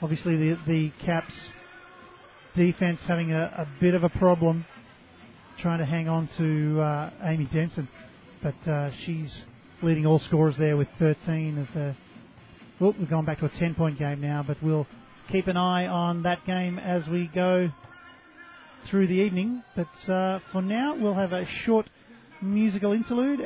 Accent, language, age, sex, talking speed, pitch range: Australian, English, 40-59, male, 165 wpm, 160-190 Hz